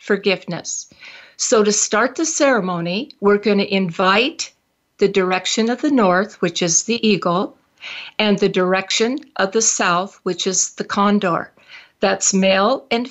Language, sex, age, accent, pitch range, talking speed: English, female, 50-69, American, 190-230 Hz, 145 wpm